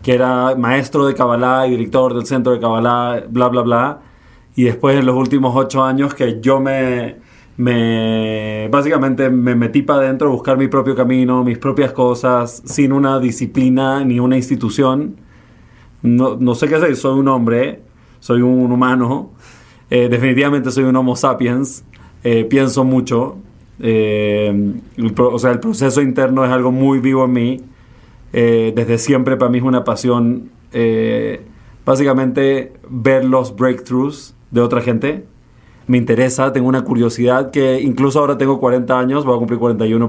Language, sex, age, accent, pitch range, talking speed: Spanish, male, 30-49, Mexican, 120-135 Hz, 160 wpm